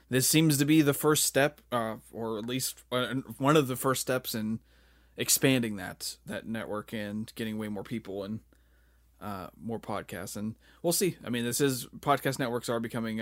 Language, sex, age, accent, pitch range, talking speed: English, male, 20-39, American, 100-125 Hz, 185 wpm